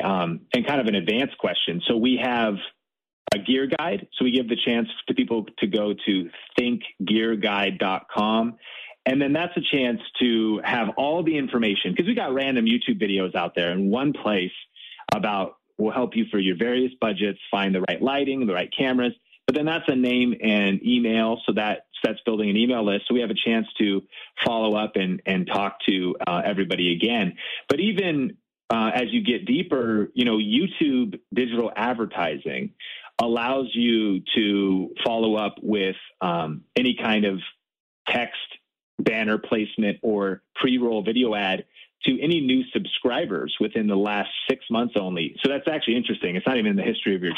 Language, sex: English, male